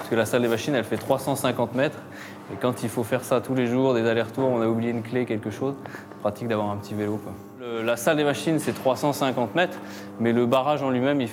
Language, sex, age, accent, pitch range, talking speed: French, male, 20-39, French, 110-135 Hz, 260 wpm